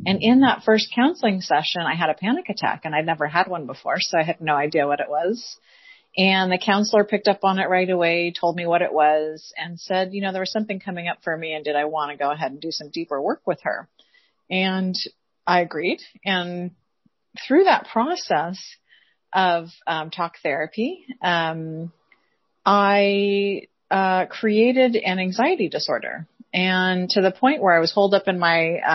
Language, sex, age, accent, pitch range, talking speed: English, female, 30-49, American, 165-205 Hz, 195 wpm